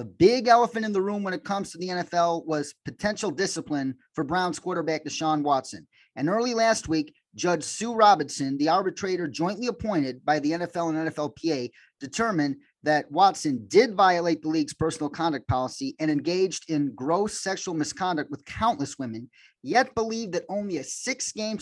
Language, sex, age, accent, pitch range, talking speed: English, male, 30-49, American, 145-190 Hz, 170 wpm